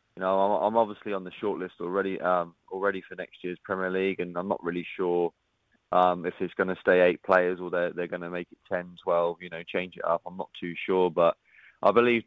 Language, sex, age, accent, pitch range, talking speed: English, male, 20-39, British, 90-105 Hz, 245 wpm